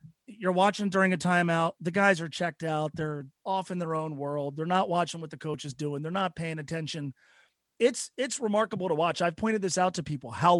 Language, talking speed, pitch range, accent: English, 225 wpm, 170-220 Hz, American